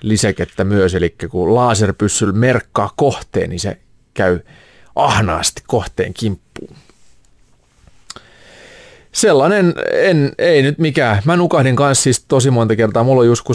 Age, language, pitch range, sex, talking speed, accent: 30-49, Finnish, 105-135 Hz, male, 125 wpm, native